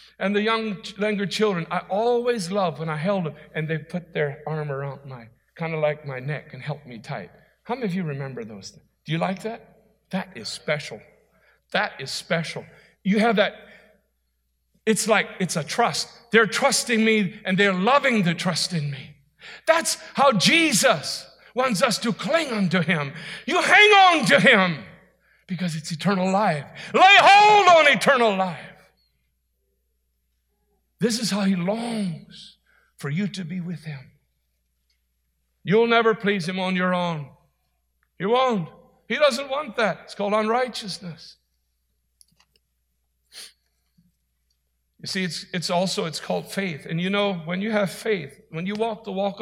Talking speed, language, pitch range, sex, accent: 160 wpm, English, 150-215 Hz, male, American